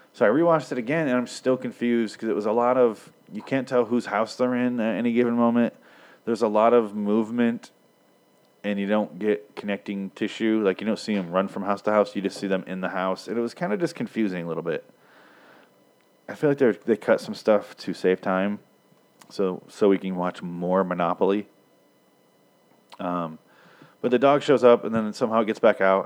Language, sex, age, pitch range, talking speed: English, male, 30-49, 95-120 Hz, 220 wpm